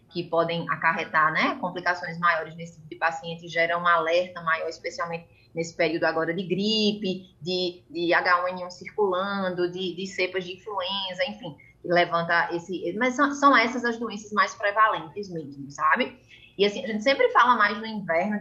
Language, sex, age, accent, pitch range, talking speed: Portuguese, female, 20-39, Brazilian, 175-215 Hz, 165 wpm